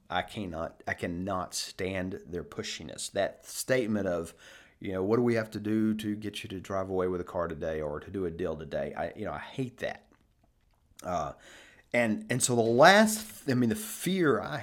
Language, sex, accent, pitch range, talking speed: English, male, American, 95-120 Hz, 210 wpm